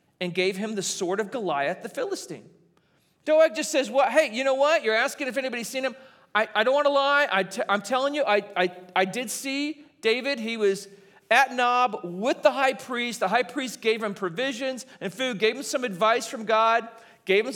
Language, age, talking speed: English, 40-59, 215 wpm